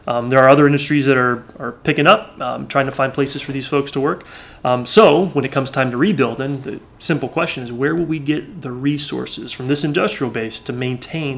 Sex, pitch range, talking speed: male, 125-145 Hz, 230 wpm